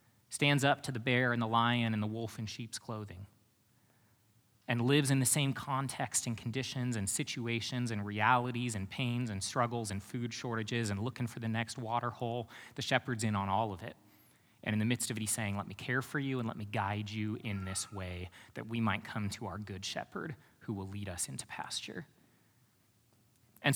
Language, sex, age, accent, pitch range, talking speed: English, male, 30-49, American, 110-135 Hz, 210 wpm